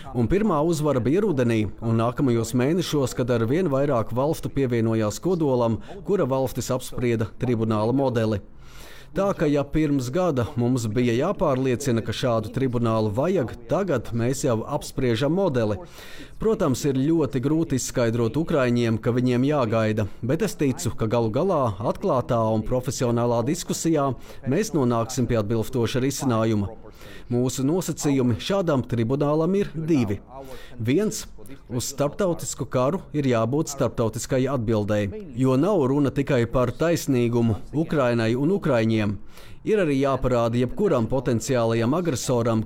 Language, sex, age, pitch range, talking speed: English, male, 30-49, 115-145 Hz, 130 wpm